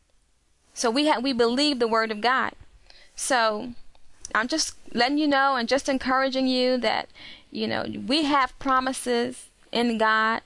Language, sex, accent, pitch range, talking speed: English, female, American, 225-280 Hz, 155 wpm